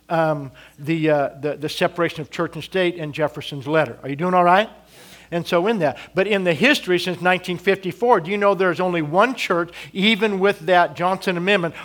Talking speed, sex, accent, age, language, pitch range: 200 wpm, male, American, 50-69, English, 165-205 Hz